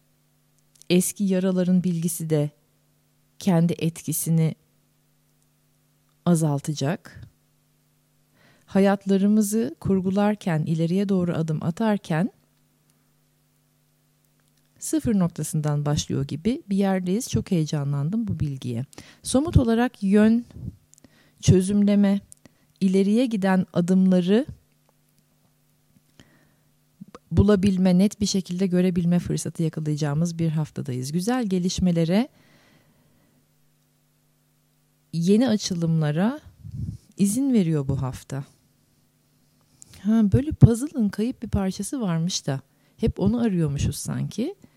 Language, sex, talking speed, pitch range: Turkish, female, 80 wpm, 155-215 Hz